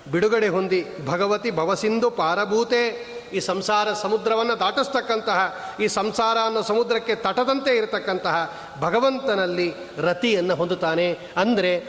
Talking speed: 95 wpm